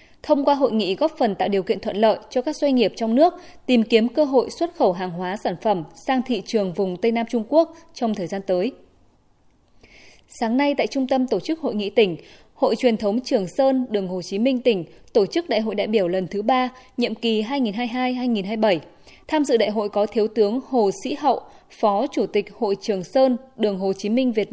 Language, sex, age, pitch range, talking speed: Vietnamese, female, 20-39, 205-260 Hz, 225 wpm